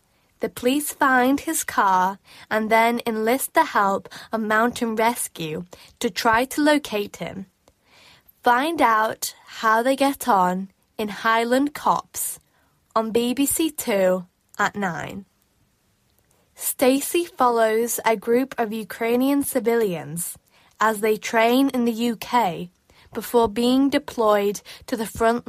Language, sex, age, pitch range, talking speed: English, female, 10-29, 200-250 Hz, 120 wpm